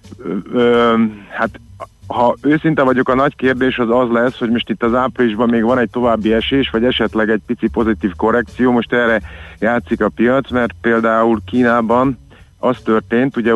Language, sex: Hungarian, male